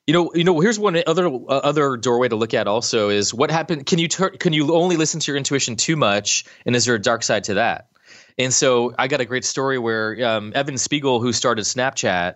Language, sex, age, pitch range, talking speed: English, male, 20-39, 110-135 Hz, 250 wpm